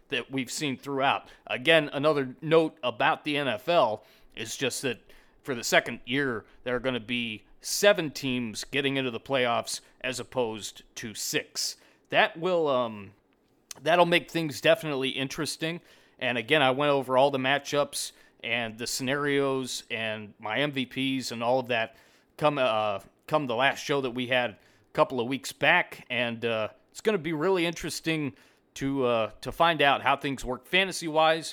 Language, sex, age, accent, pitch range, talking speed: English, male, 30-49, American, 125-160 Hz, 170 wpm